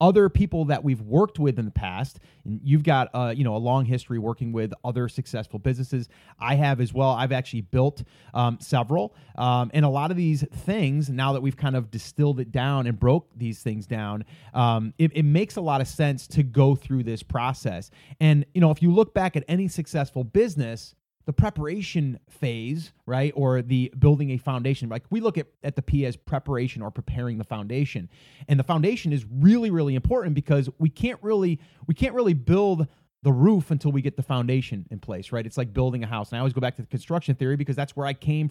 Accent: American